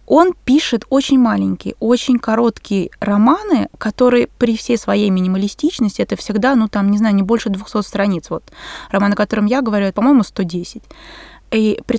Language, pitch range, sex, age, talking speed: Russian, 210-260 Hz, female, 20-39, 160 wpm